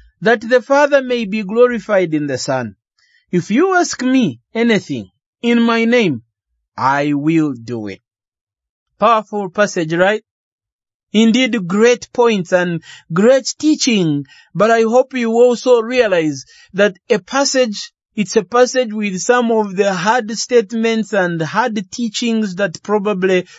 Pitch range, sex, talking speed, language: 190-260 Hz, male, 135 wpm, English